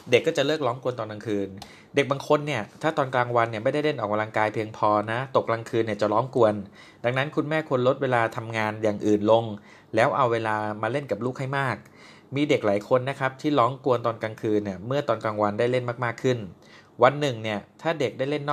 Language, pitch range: Thai, 110-135 Hz